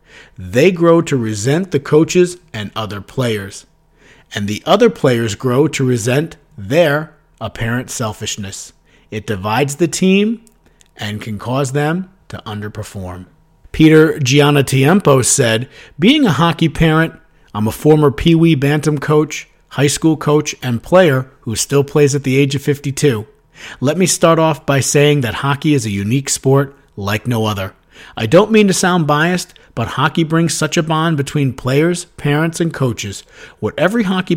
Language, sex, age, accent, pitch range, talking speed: English, male, 50-69, American, 115-160 Hz, 160 wpm